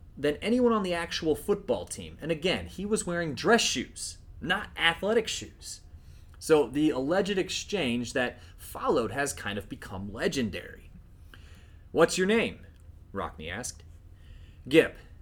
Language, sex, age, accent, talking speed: English, male, 30-49, American, 135 wpm